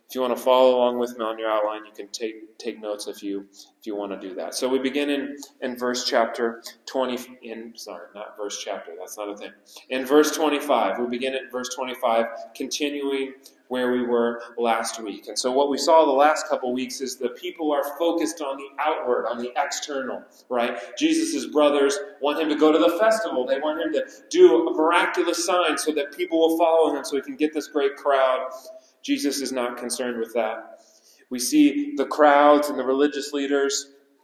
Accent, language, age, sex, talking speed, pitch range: American, English, 30-49, male, 210 wpm, 125-155 Hz